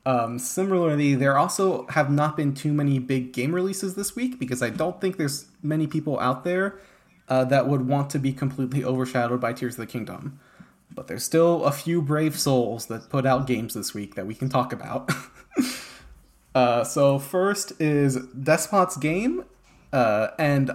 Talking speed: 180 wpm